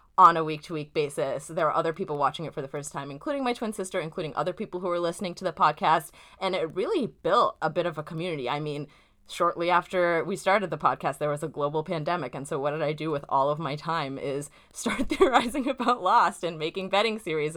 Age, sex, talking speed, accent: 20-39, female, 235 wpm, American